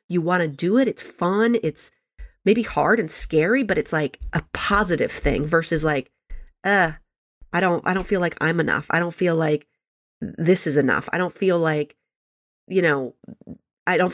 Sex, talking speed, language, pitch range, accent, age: female, 185 wpm, English, 160-215 Hz, American, 30-49